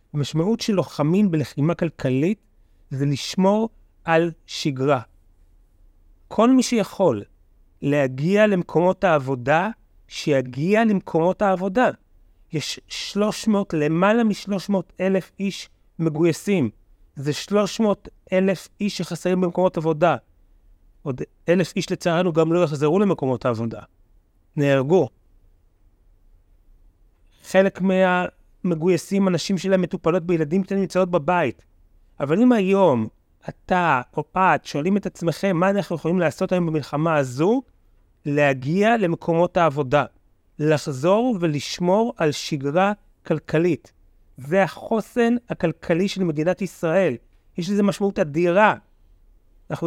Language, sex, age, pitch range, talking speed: Hebrew, male, 30-49, 130-195 Hz, 105 wpm